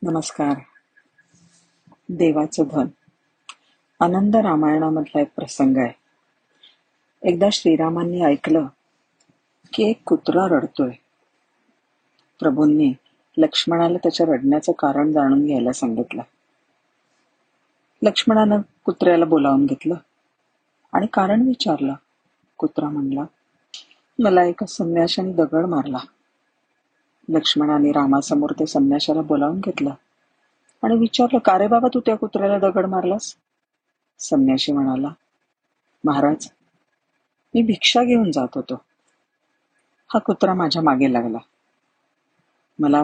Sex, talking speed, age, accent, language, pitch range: female, 95 wpm, 40-59, native, Marathi, 150-230 Hz